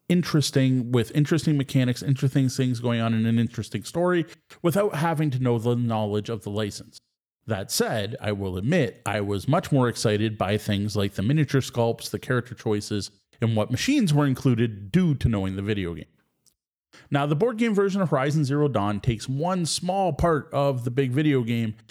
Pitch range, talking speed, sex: 115-150 Hz, 190 wpm, male